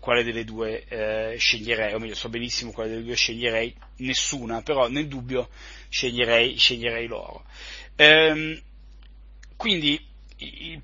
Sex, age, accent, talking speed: male, 30-49, native, 125 wpm